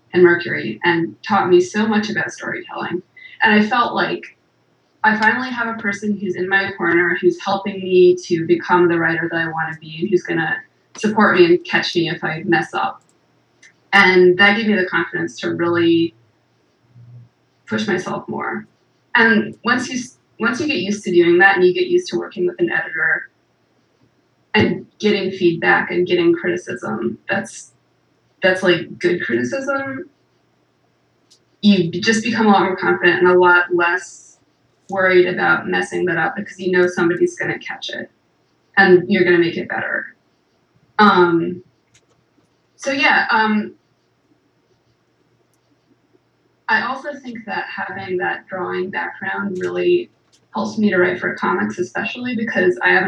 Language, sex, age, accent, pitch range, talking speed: English, female, 20-39, American, 175-215 Hz, 160 wpm